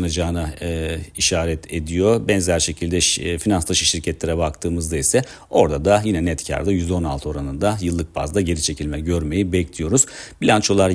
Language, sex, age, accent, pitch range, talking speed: Turkish, male, 50-69, native, 85-95 Hz, 130 wpm